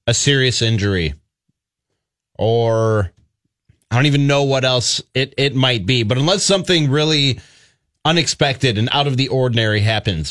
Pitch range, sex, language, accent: 125-165 Hz, male, English, American